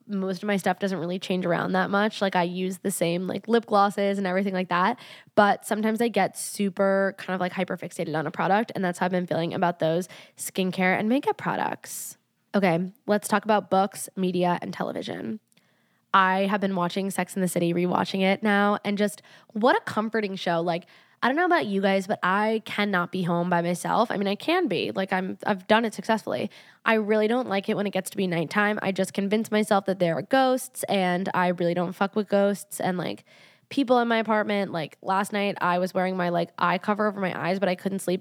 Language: English